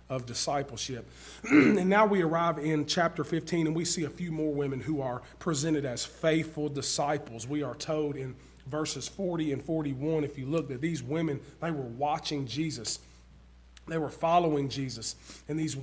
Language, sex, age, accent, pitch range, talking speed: English, male, 40-59, American, 125-160 Hz, 175 wpm